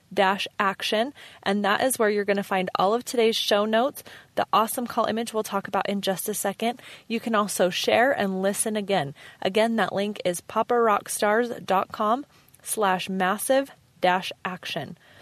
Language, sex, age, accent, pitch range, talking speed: English, female, 20-39, American, 195-230 Hz, 150 wpm